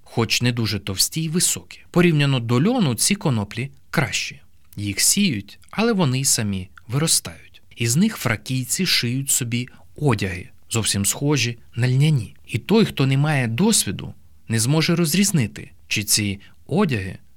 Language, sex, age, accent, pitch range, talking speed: Ukrainian, male, 20-39, native, 100-140 Hz, 140 wpm